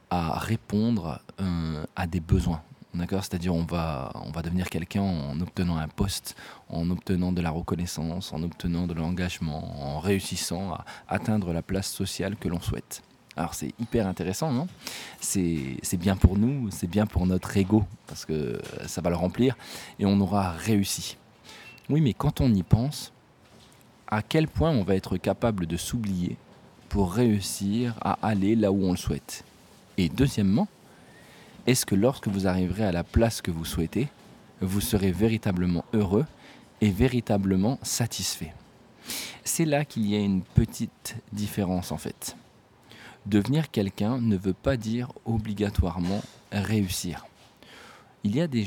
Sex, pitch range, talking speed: male, 90-110 Hz, 160 wpm